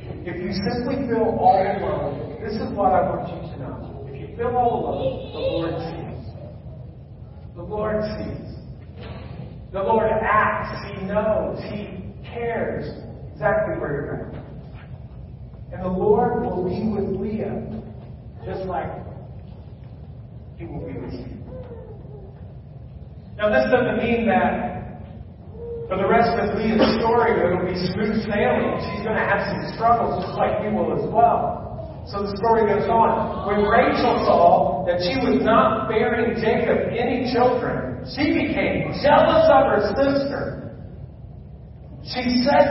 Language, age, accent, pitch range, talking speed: English, 40-59, American, 185-250 Hz, 140 wpm